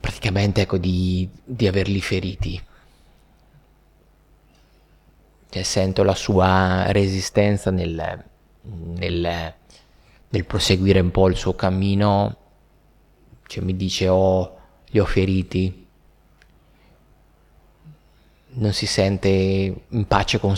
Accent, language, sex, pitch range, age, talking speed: native, Italian, male, 85-100 Hz, 20-39, 95 wpm